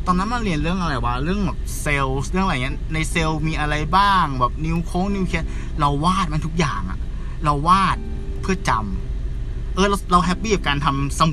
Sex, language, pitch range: male, Thai, 115-165 Hz